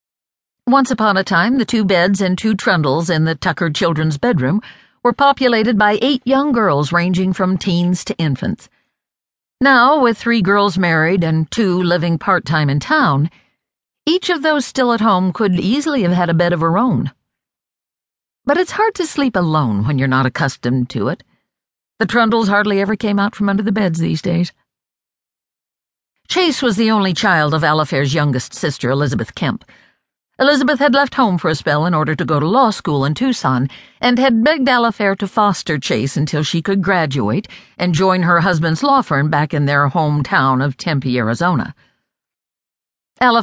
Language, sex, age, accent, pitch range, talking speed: English, female, 60-79, American, 150-225 Hz, 180 wpm